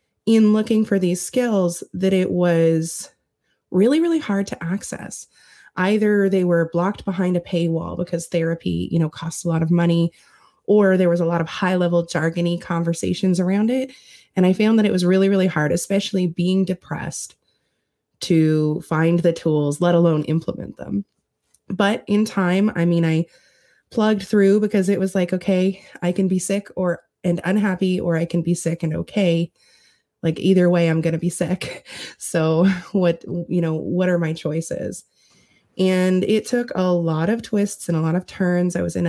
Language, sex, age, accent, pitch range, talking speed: English, female, 20-39, American, 165-190 Hz, 185 wpm